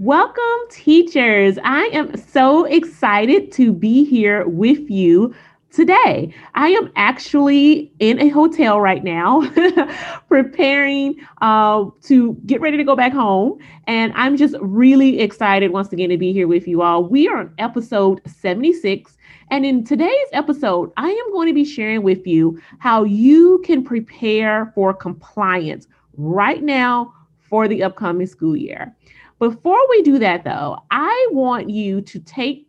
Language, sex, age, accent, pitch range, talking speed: English, female, 30-49, American, 195-290 Hz, 150 wpm